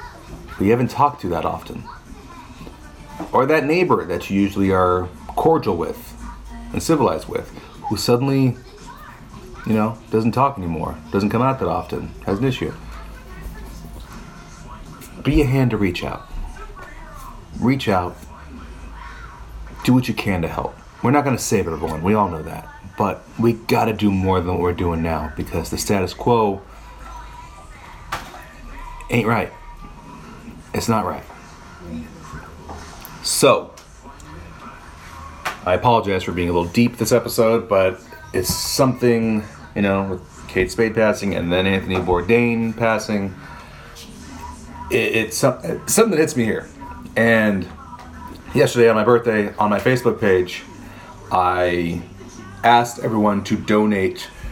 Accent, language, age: American, English, 30-49